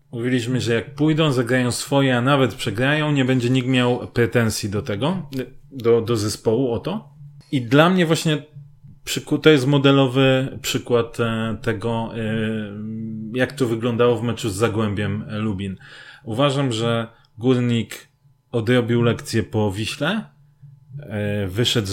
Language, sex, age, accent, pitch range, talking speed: Polish, male, 30-49, native, 115-140 Hz, 125 wpm